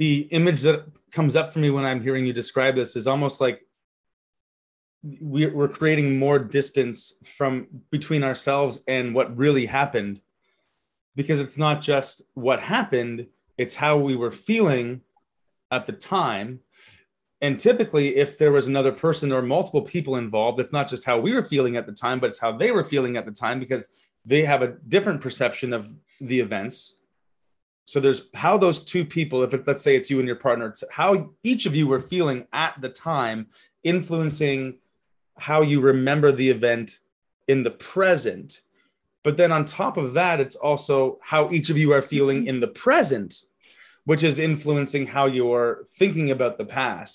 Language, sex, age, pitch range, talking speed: English, male, 30-49, 130-155 Hz, 175 wpm